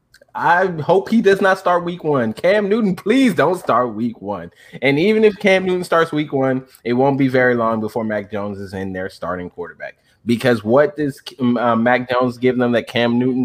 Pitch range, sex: 105-125 Hz, male